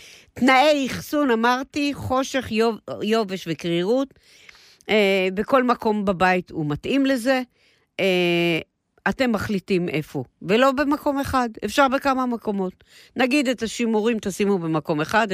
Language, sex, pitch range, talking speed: Hebrew, female, 180-260 Hz, 115 wpm